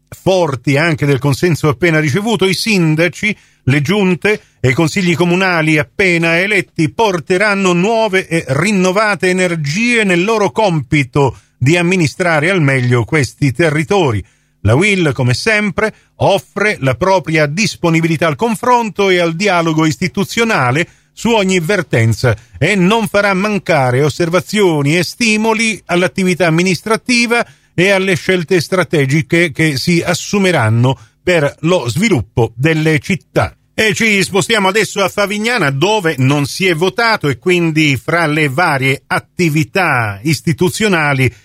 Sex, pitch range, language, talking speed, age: male, 145-195 Hz, Italian, 125 wpm, 40-59